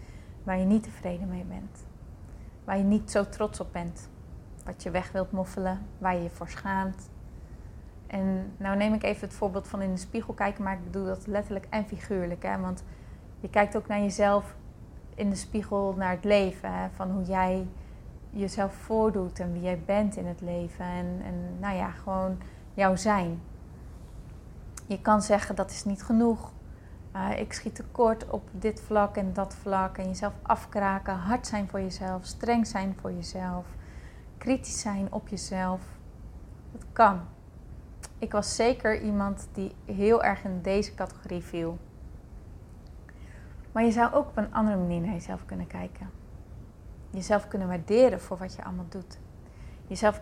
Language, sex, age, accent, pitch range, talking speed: Dutch, female, 30-49, Dutch, 175-205 Hz, 165 wpm